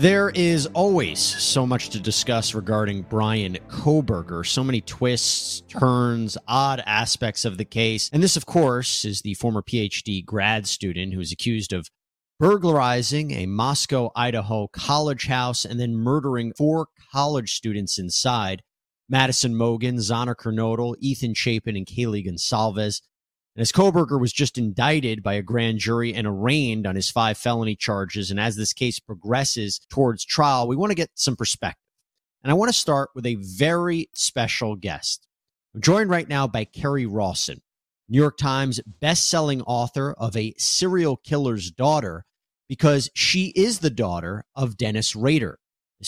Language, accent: English, American